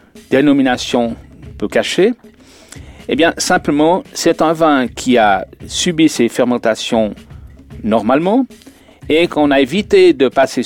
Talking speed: 120 wpm